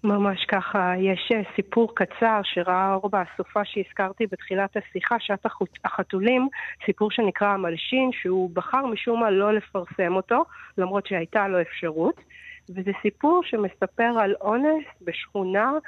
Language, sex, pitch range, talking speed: Hebrew, female, 185-230 Hz, 125 wpm